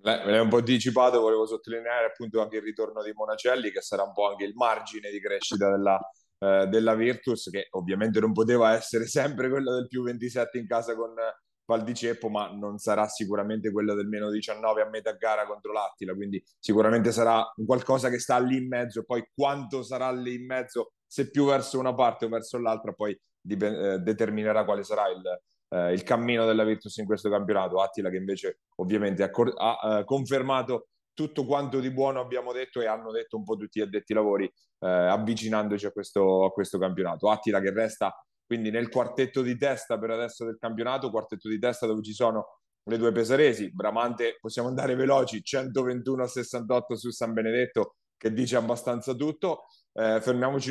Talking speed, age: 190 wpm, 30-49